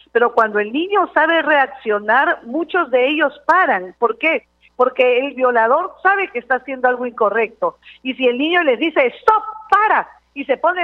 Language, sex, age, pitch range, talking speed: Spanish, female, 50-69, 220-290 Hz, 175 wpm